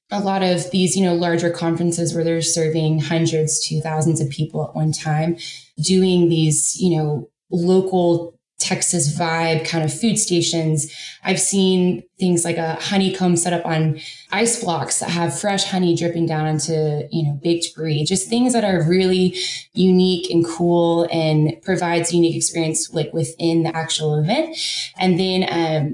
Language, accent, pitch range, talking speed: English, American, 155-180 Hz, 165 wpm